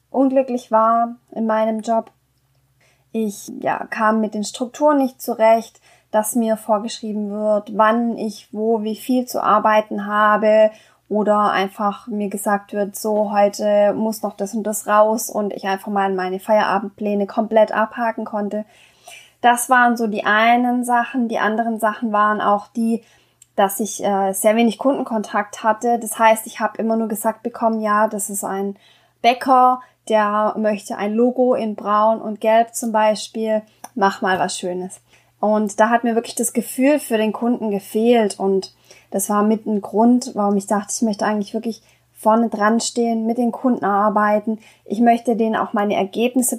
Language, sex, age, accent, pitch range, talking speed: German, female, 20-39, German, 210-230 Hz, 165 wpm